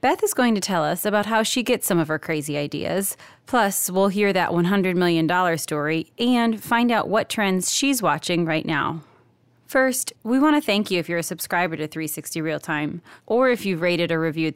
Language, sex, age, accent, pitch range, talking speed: English, female, 30-49, American, 170-220 Hz, 210 wpm